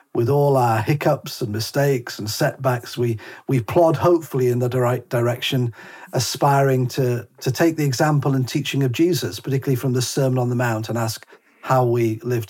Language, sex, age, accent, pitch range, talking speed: English, male, 40-59, British, 120-140 Hz, 185 wpm